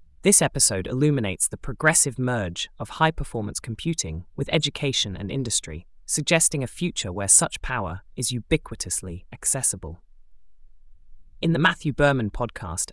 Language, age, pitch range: English, 20-39, 95-140 Hz